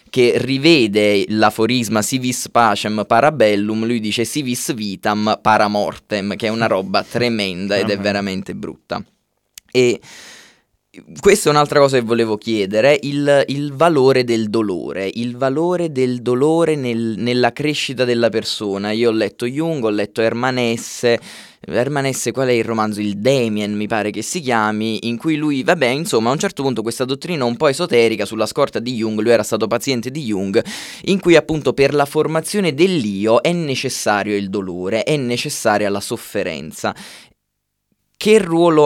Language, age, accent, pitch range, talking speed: Italian, 20-39, native, 110-140 Hz, 160 wpm